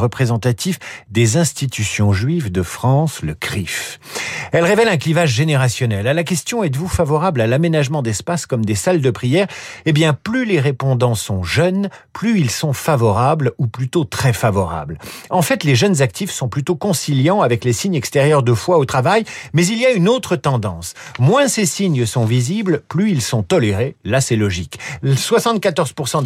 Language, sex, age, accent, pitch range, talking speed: French, male, 50-69, French, 130-185 Hz, 175 wpm